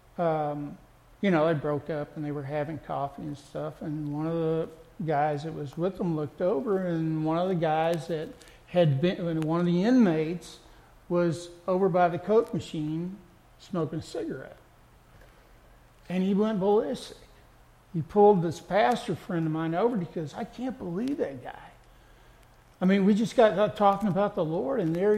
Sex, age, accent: male, 60-79, American